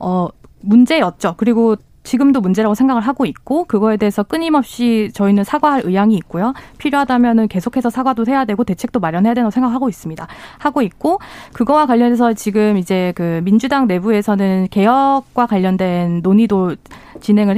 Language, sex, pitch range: Korean, female, 195-265 Hz